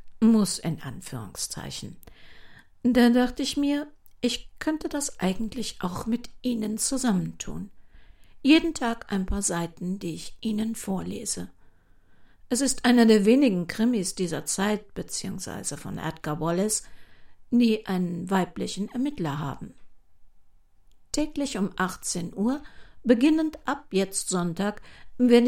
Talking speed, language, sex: 120 wpm, German, female